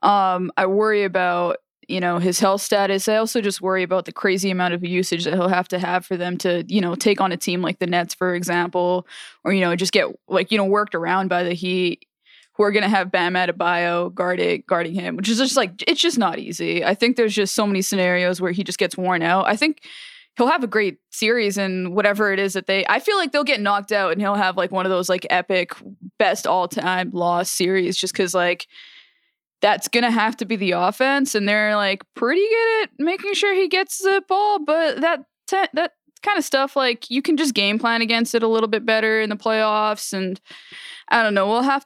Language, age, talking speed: English, 20-39, 235 wpm